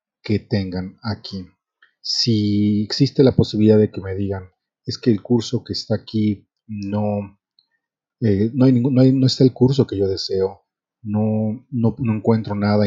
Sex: male